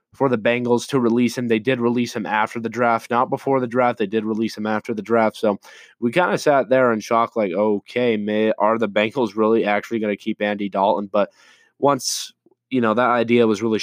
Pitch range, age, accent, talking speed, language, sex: 105-120 Hz, 20-39, American, 225 wpm, English, male